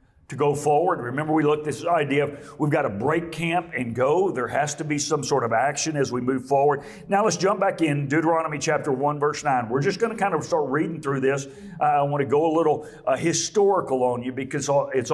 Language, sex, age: English, male, 50-69